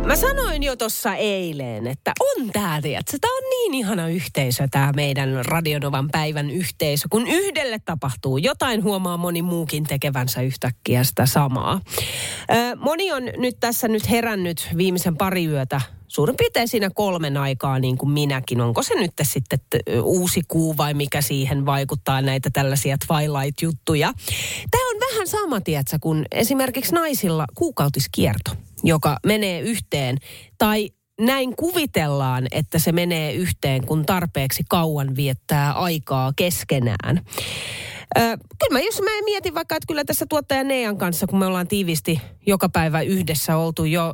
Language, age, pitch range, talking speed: Finnish, 30-49, 140-235 Hz, 145 wpm